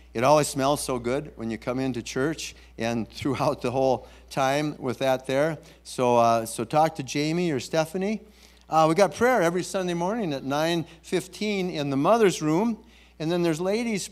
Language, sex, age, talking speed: English, male, 50-69, 185 wpm